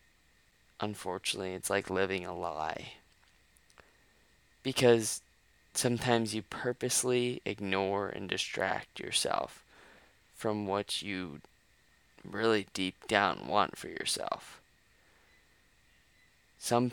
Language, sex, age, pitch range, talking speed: English, male, 20-39, 100-125 Hz, 85 wpm